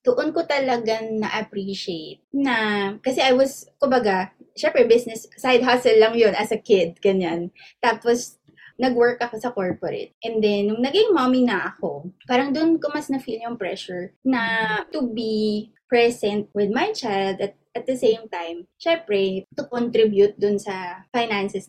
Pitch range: 195-250 Hz